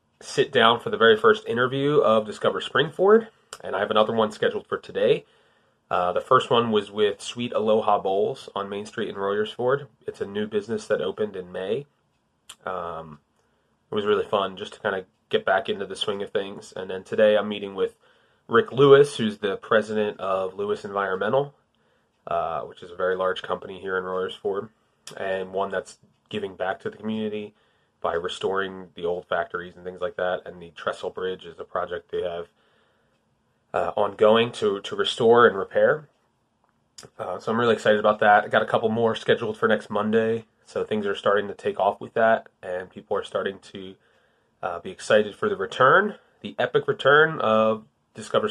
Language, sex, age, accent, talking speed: English, male, 30-49, American, 195 wpm